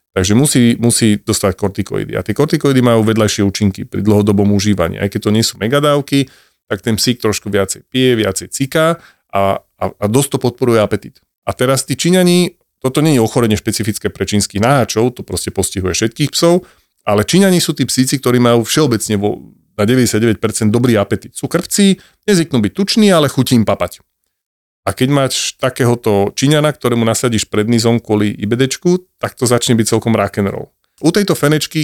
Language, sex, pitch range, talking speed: Slovak, male, 105-135 Hz, 175 wpm